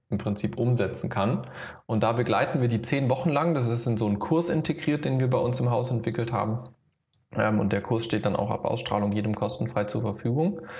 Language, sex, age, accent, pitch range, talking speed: German, male, 20-39, German, 110-130 Hz, 215 wpm